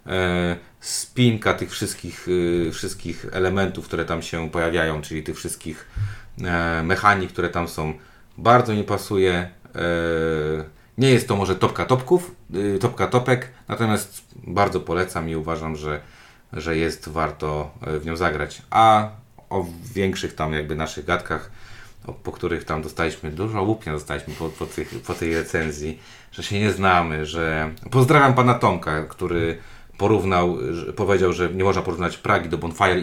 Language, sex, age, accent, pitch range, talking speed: Polish, male, 30-49, native, 80-105 Hz, 150 wpm